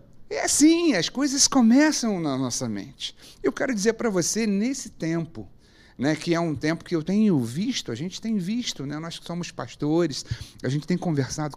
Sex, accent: male, Brazilian